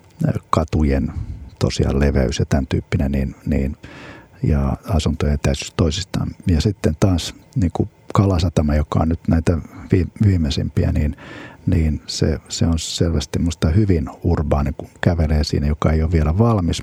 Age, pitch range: 50-69, 75-100 Hz